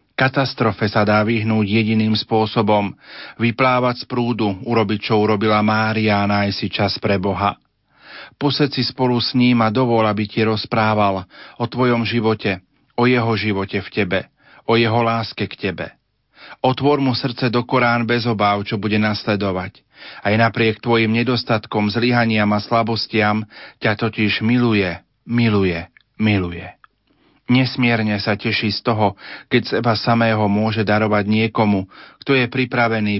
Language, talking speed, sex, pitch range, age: Slovak, 140 wpm, male, 105-120 Hz, 40-59